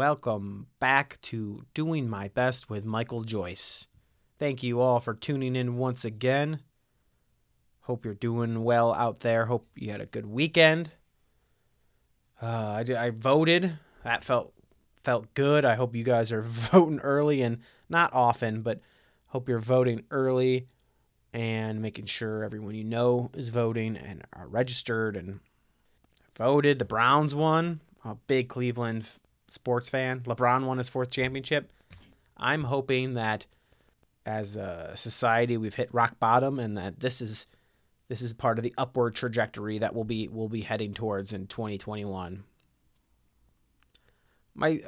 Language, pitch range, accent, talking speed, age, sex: English, 110-135 Hz, American, 145 wpm, 30-49, male